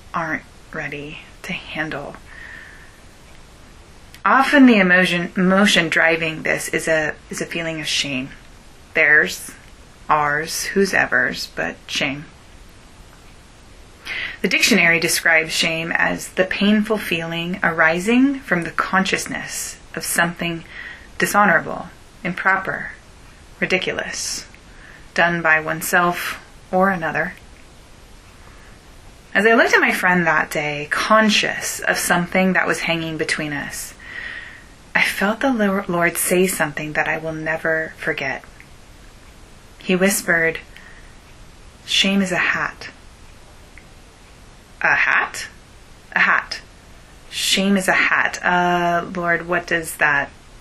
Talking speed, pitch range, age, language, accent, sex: 105 wpm, 160-195 Hz, 20-39, English, American, female